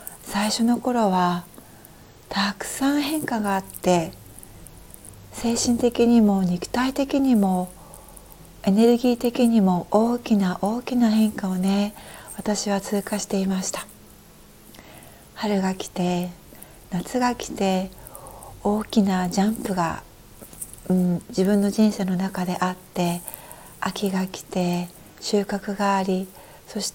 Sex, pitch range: female, 180-225 Hz